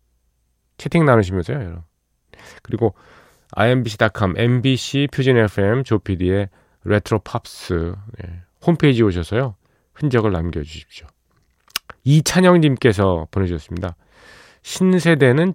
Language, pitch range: Korean, 85-120 Hz